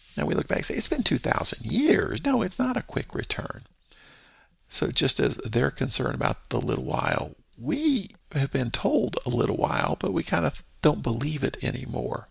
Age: 50-69